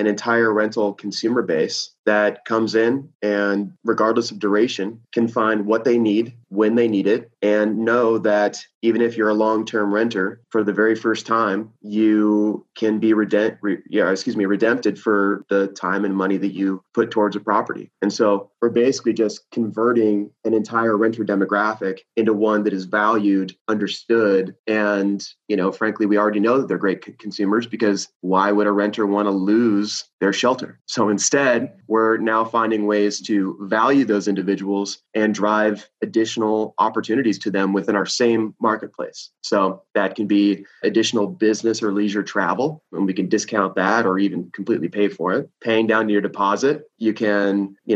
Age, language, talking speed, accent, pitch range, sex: 30-49, English, 175 wpm, American, 100-110 Hz, male